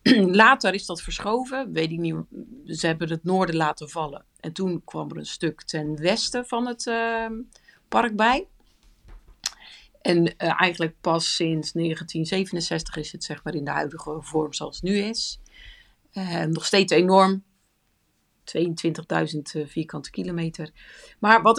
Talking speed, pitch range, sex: 150 wpm, 160-200 Hz, female